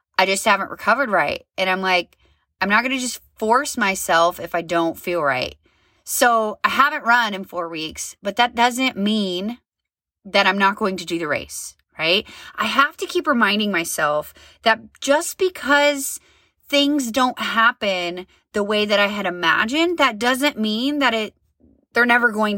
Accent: American